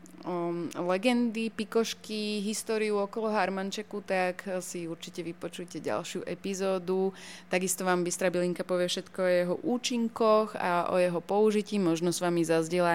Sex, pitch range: female, 170-195 Hz